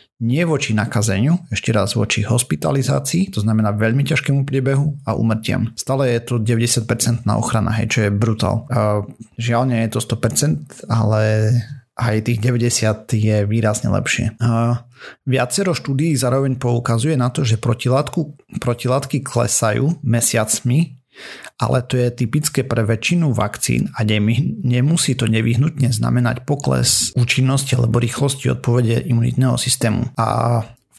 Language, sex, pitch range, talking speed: Slovak, male, 115-130 Hz, 130 wpm